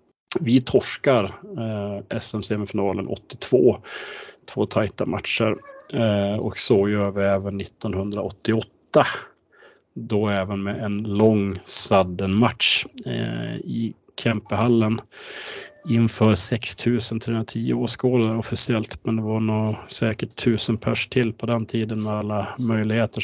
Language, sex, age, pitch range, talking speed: English, male, 30-49, 100-115 Hz, 115 wpm